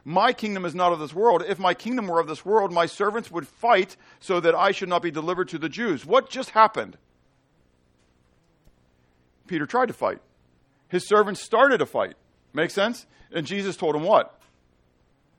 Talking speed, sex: 185 wpm, male